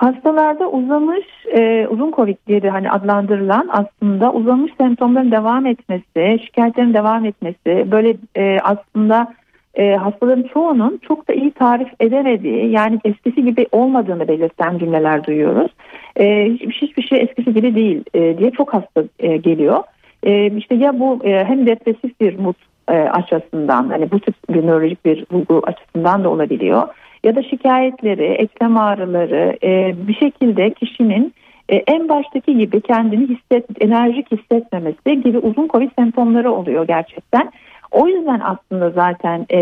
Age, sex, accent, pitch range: 60-79, female, native, 185-245 Hz